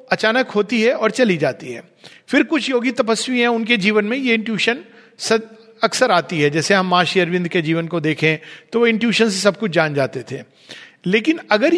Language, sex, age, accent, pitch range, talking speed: Hindi, male, 50-69, native, 180-250 Hz, 200 wpm